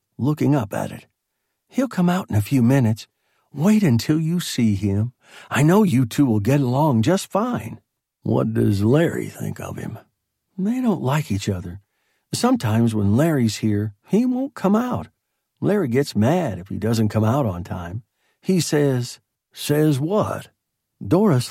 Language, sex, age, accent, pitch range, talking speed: English, male, 60-79, American, 110-175 Hz, 165 wpm